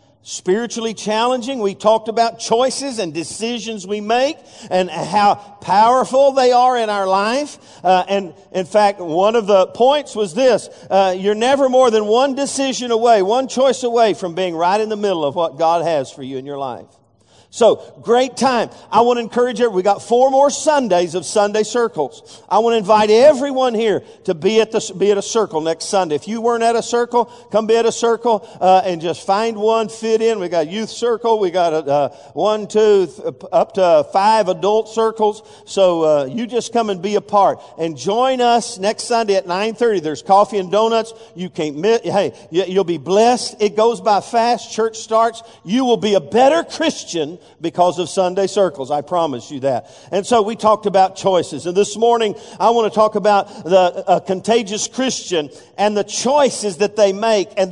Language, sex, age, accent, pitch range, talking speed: English, male, 50-69, American, 185-230 Hz, 200 wpm